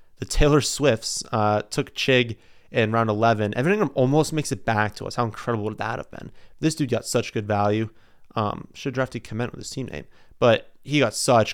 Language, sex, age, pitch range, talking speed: English, male, 30-49, 110-135 Hz, 220 wpm